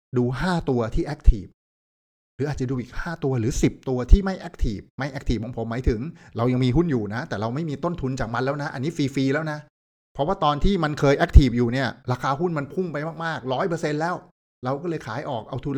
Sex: male